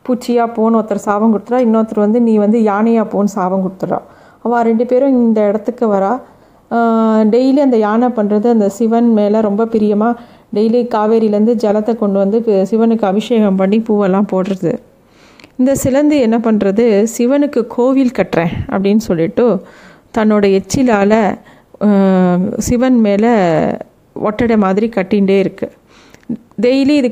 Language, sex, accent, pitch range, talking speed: Tamil, female, native, 200-235 Hz, 125 wpm